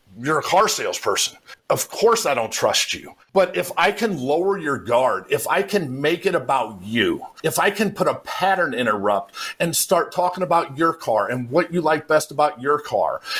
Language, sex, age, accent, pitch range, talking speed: English, male, 50-69, American, 145-195 Hz, 200 wpm